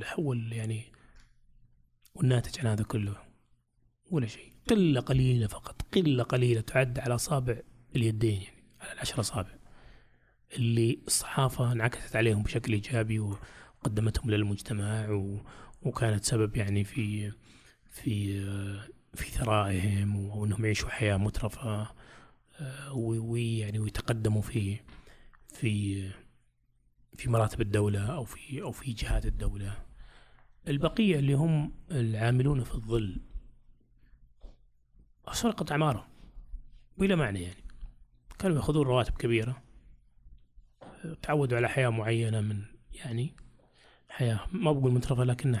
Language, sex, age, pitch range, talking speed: Arabic, male, 20-39, 105-130 Hz, 105 wpm